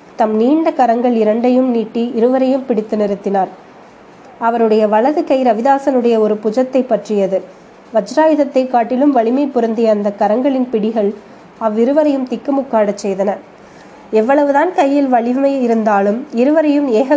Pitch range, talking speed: 215-260 Hz, 110 wpm